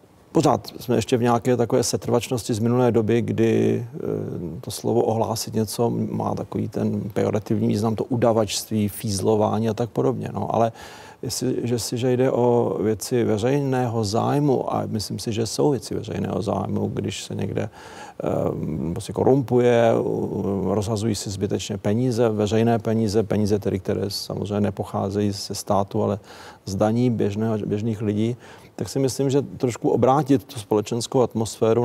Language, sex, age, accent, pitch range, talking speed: Czech, male, 40-59, native, 105-120 Hz, 145 wpm